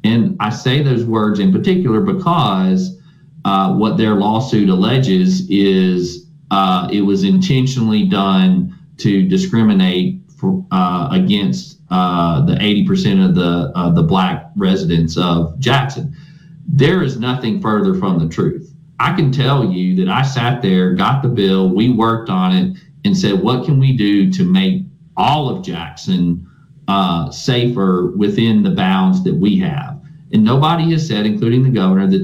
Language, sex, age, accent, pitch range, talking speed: English, male, 40-59, American, 115-185 Hz, 155 wpm